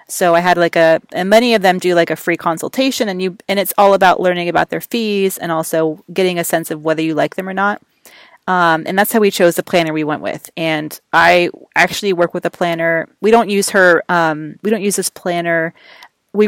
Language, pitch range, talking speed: English, 160-195 Hz, 235 wpm